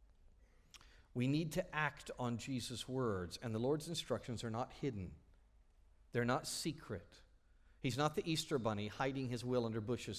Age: 50-69